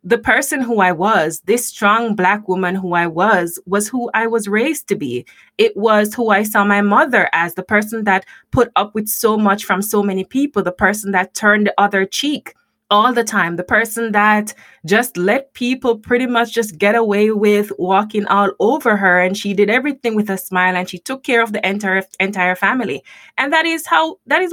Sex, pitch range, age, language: female, 180-240 Hz, 20-39, English